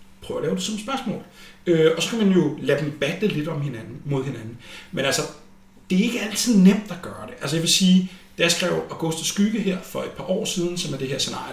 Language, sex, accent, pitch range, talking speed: Danish, male, native, 125-185 Hz, 260 wpm